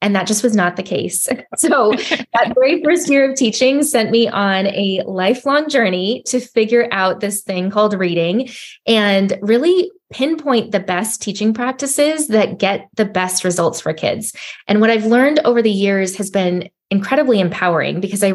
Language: English